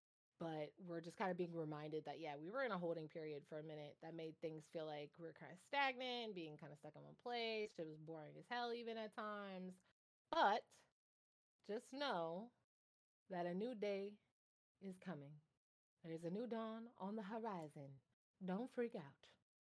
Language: English